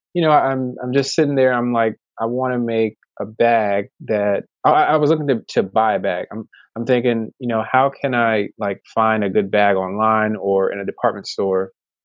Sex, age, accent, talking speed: male, 20-39, American, 220 wpm